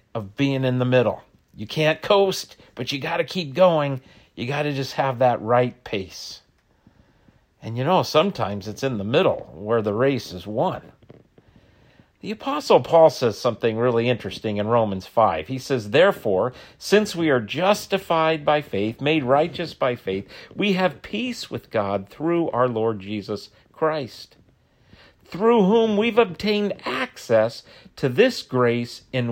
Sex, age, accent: male, 50-69, American